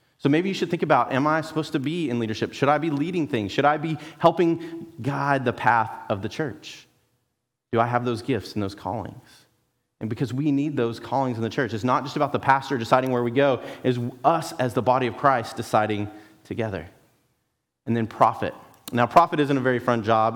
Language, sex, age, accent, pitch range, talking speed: English, male, 30-49, American, 115-155 Hz, 220 wpm